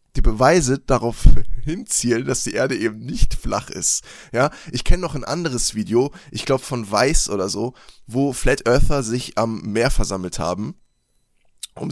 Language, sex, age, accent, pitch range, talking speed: German, male, 20-39, German, 115-135 Hz, 165 wpm